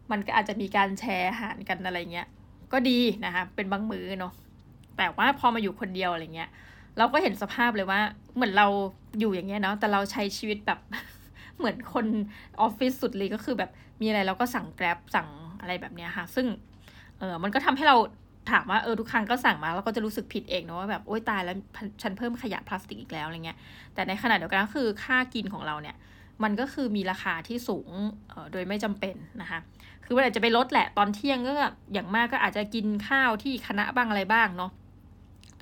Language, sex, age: Thai, female, 20-39